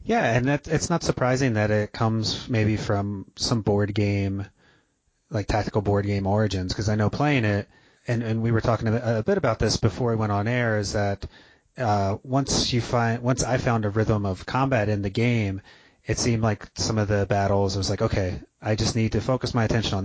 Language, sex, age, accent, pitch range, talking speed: English, male, 30-49, American, 100-115 Hz, 215 wpm